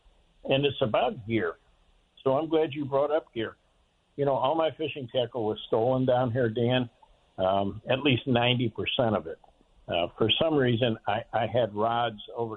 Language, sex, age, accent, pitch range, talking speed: English, male, 60-79, American, 105-130 Hz, 180 wpm